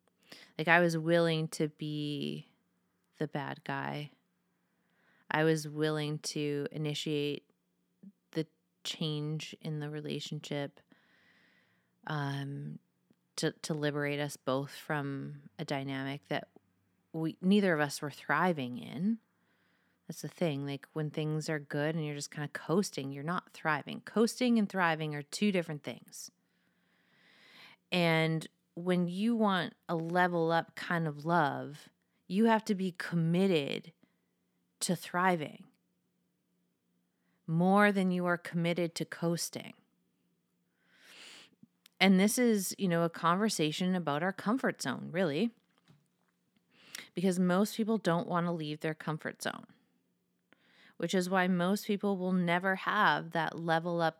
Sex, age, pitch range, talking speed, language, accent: female, 30-49, 145-185 Hz, 130 wpm, English, American